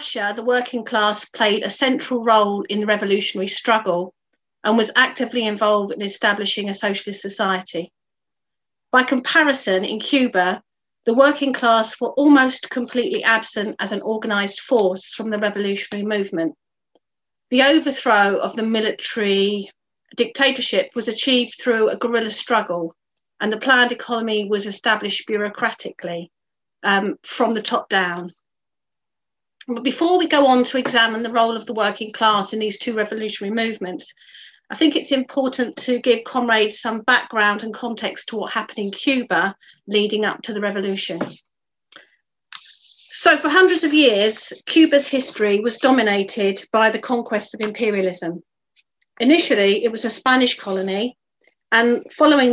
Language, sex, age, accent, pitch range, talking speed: English, female, 40-59, British, 205-250 Hz, 145 wpm